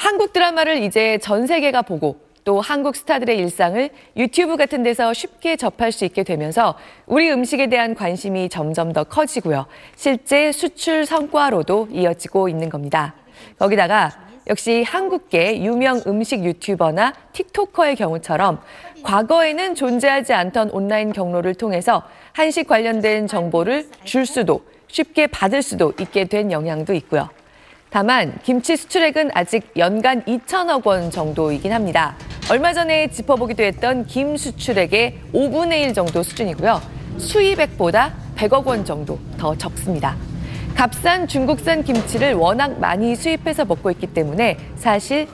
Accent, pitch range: native, 190-300 Hz